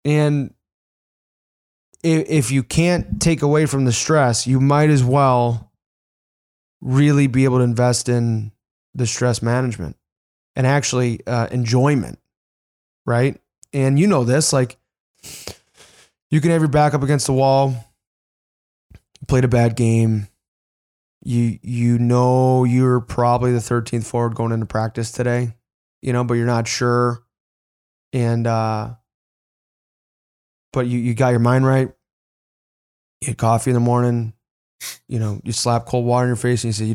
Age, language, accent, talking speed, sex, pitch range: 20-39, English, American, 150 wpm, male, 110-130 Hz